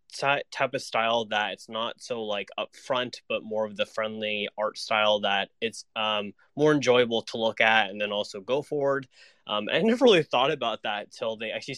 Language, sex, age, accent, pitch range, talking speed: English, male, 20-39, American, 105-120 Hz, 200 wpm